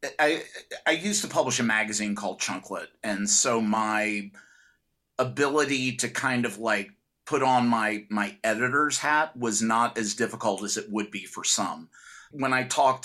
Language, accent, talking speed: English, American, 165 wpm